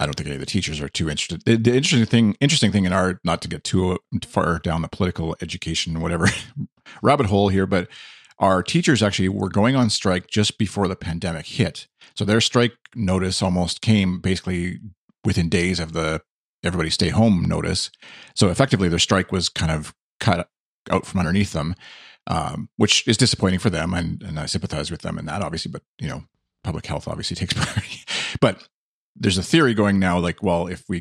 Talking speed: 200 wpm